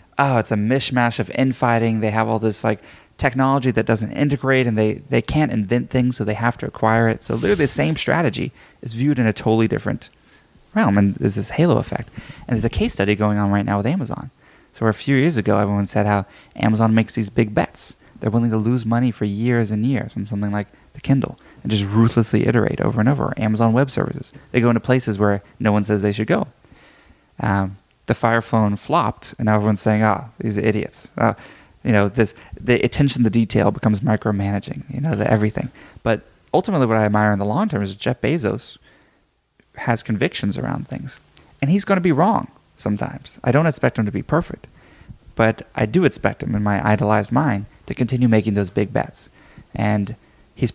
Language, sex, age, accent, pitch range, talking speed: English, male, 20-39, American, 105-130 Hz, 210 wpm